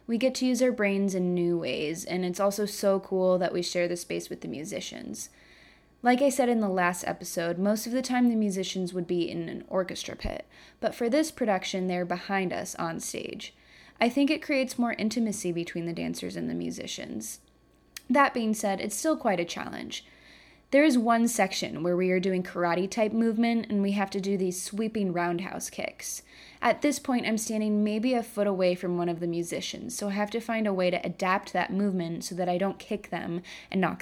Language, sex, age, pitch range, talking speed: English, female, 20-39, 180-230 Hz, 215 wpm